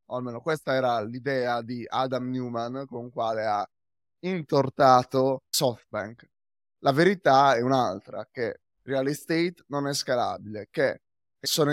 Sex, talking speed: male, 135 wpm